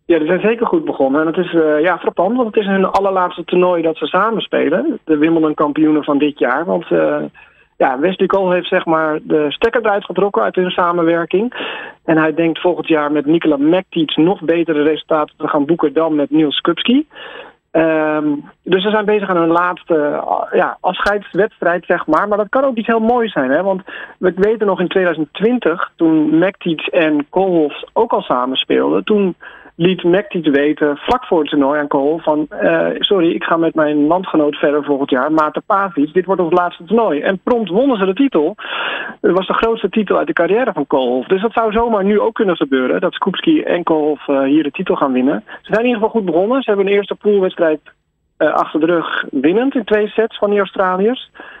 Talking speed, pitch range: 210 wpm, 155-215 Hz